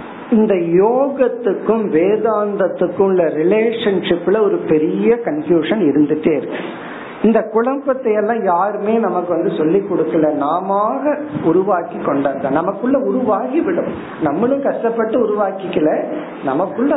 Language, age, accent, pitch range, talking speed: Tamil, 50-69, native, 165-225 Hz, 80 wpm